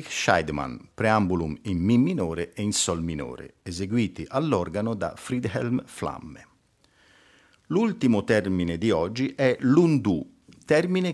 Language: Italian